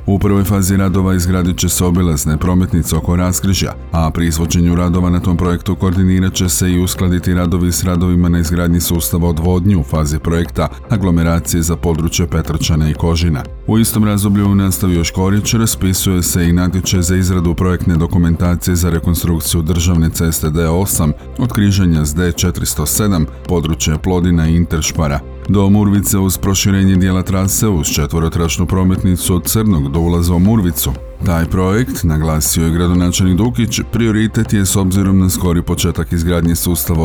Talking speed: 150 wpm